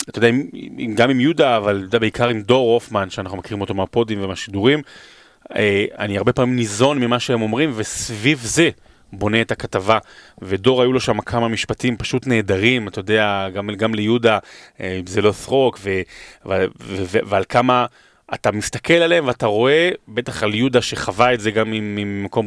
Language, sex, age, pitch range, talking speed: Hebrew, male, 30-49, 105-130 Hz, 160 wpm